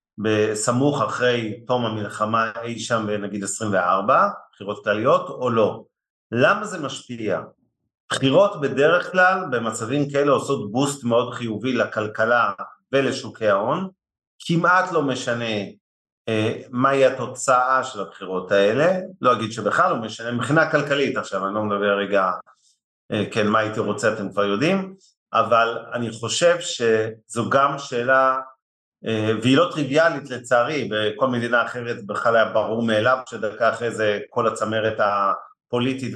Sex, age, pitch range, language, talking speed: male, 40-59, 110-135 Hz, Hebrew, 135 wpm